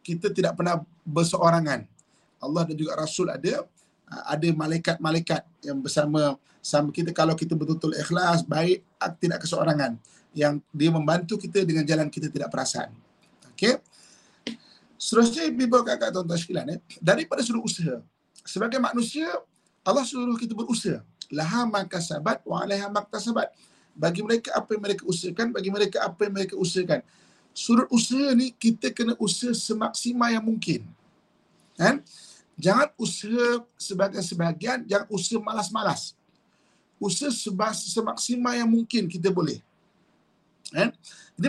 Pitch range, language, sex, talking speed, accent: 170-235 Hz, English, male, 125 wpm, Indonesian